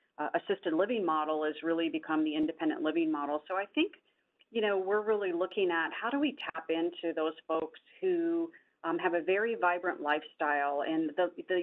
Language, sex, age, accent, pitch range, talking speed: English, female, 40-59, American, 160-210 Hz, 190 wpm